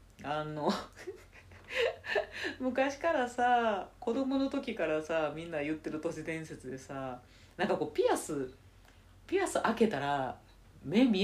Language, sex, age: Japanese, female, 40-59